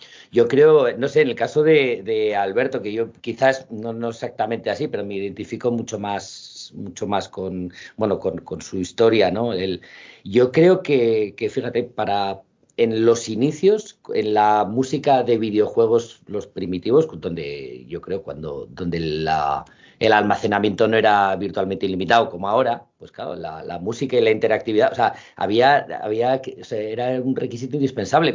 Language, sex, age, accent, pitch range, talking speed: Spanish, male, 50-69, Spanish, 100-150 Hz, 170 wpm